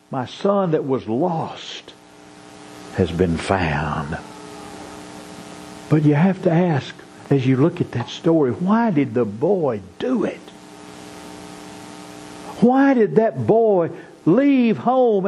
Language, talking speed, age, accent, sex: English, 120 wpm, 50-69, American, male